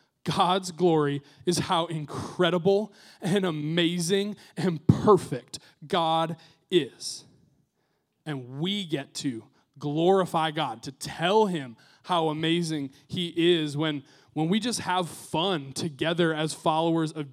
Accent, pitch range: American, 150-180 Hz